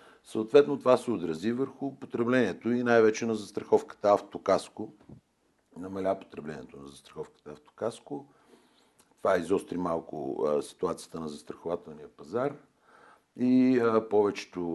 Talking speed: 100 wpm